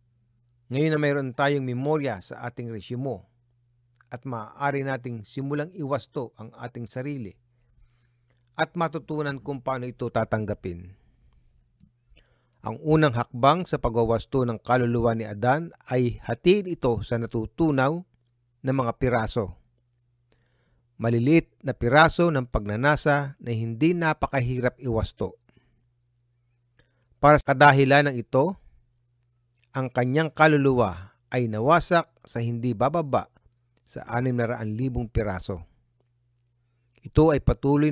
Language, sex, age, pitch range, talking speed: Filipino, male, 40-59, 115-140 Hz, 110 wpm